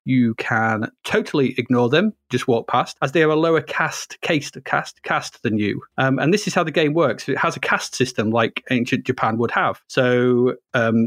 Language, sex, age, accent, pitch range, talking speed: English, male, 30-49, British, 125-175 Hz, 210 wpm